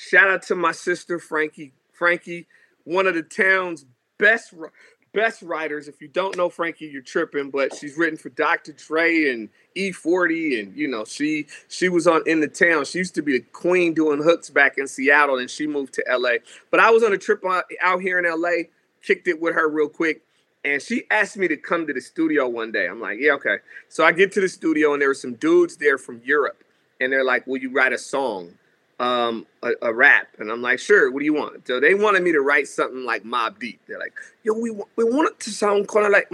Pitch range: 155-220 Hz